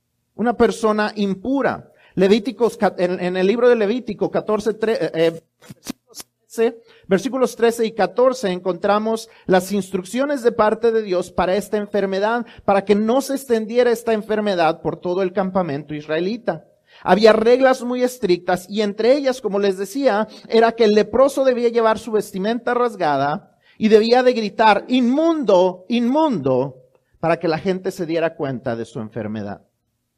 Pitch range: 175-235 Hz